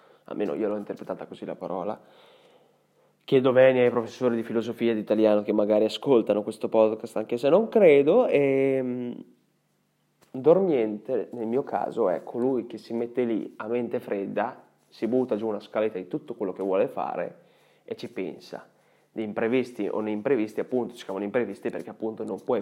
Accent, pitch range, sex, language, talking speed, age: native, 110-135 Hz, male, Italian, 170 wpm, 20-39